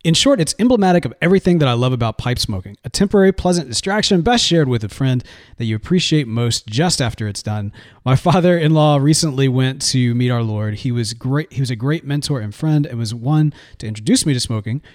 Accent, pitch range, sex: American, 115-150 Hz, male